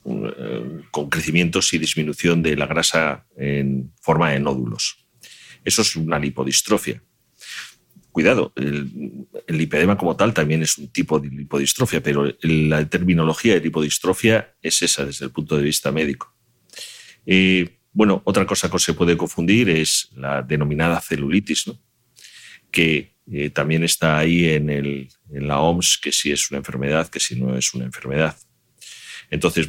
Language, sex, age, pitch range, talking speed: Spanish, male, 40-59, 70-85 Hz, 150 wpm